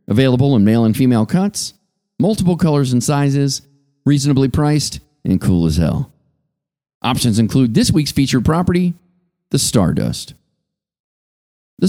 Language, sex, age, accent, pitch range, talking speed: English, male, 40-59, American, 100-150 Hz, 125 wpm